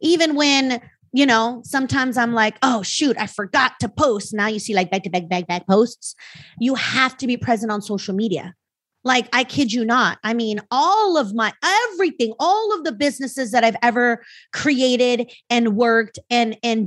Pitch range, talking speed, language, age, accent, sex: 230-300 Hz, 190 wpm, English, 30-49, American, female